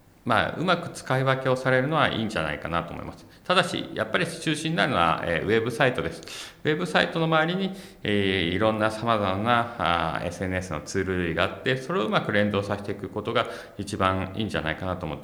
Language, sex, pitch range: Japanese, male, 80-105 Hz